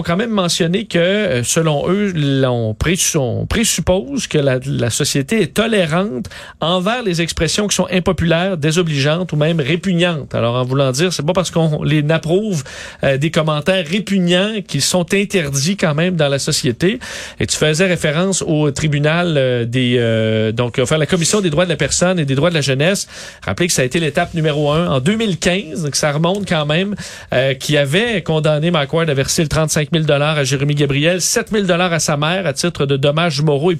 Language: French